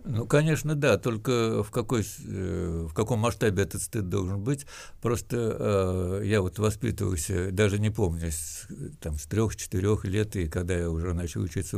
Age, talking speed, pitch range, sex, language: 60-79, 155 wpm, 90-115 Hz, male, Russian